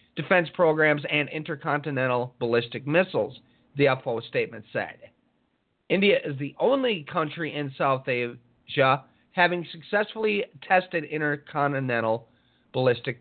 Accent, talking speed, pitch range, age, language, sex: American, 105 wpm, 135-175 Hz, 40-59, English, male